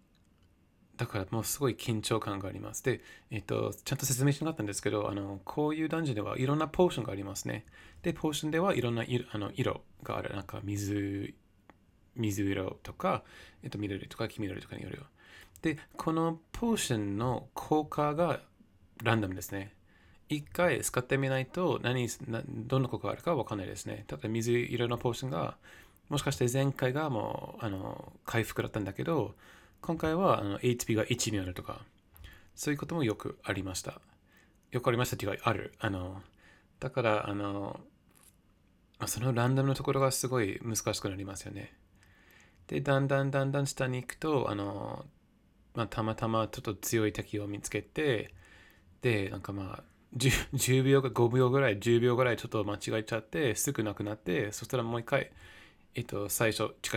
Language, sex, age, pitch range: Japanese, male, 20-39, 100-135 Hz